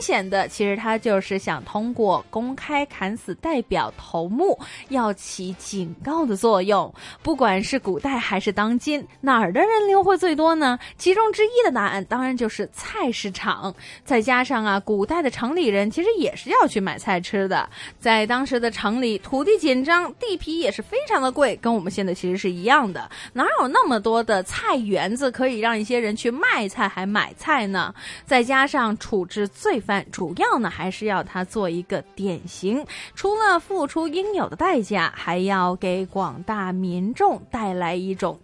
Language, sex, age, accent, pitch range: Chinese, female, 20-39, native, 195-275 Hz